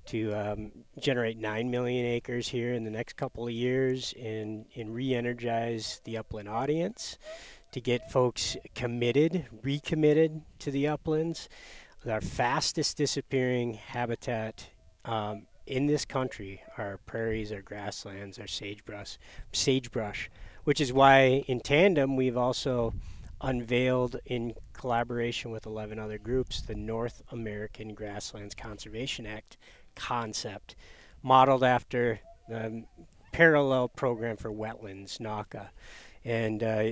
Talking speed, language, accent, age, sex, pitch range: 115 wpm, English, American, 40-59, male, 110-130 Hz